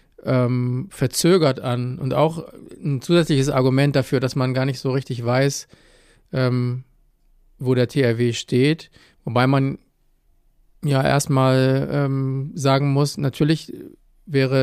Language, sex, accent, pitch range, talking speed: German, male, German, 125-140 Hz, 110 wpm